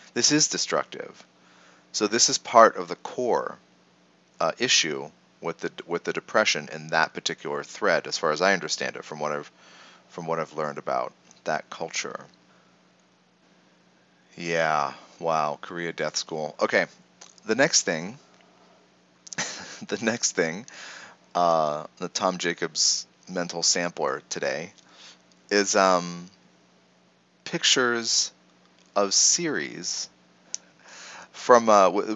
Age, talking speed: 30-49, 120 wpm